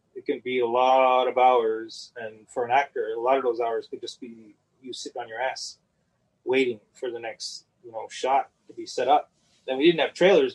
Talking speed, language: 230 wpm, English